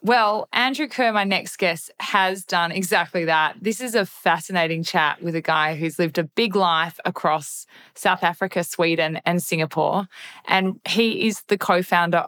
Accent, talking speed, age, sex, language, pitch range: Australian, 170 wpm, 20-39, female, English, 160-185 Hz